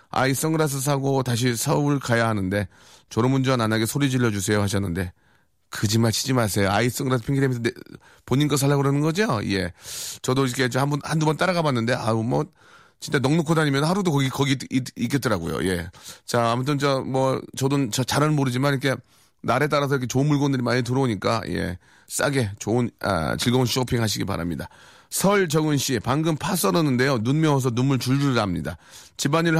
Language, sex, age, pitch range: Korean, male, 30-49, 110-145 Hz